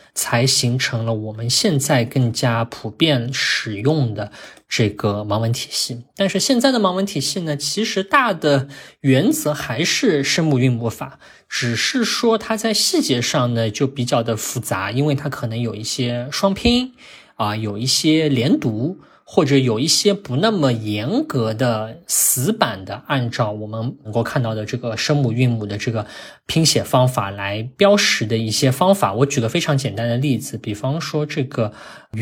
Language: Chinese